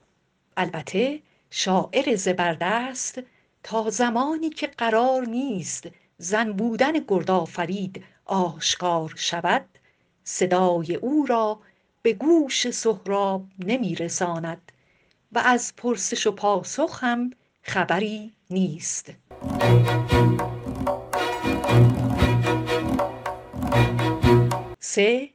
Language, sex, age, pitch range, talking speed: Persian, female, 50-69, 175-240 Hz, 70 wpm